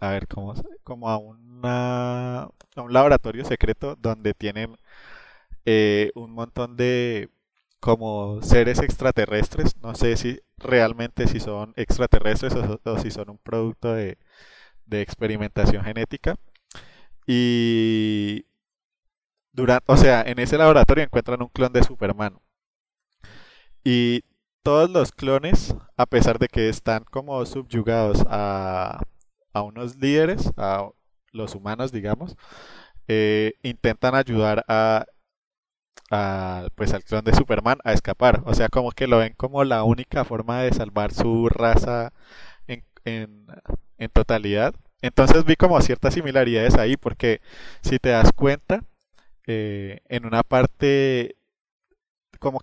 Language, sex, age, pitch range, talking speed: English, male, 20-39, 110-125 Hz, 125 wpm